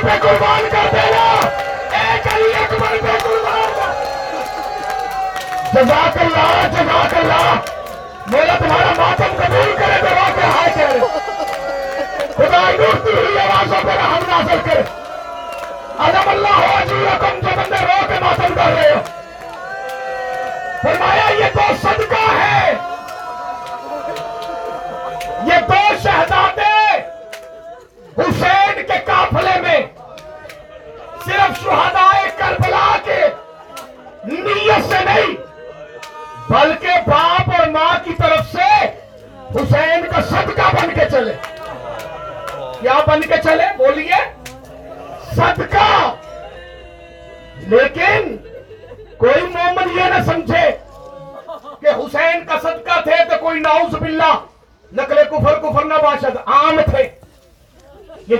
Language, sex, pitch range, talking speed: Urdu, male, 290-385 Hz, 60 wpm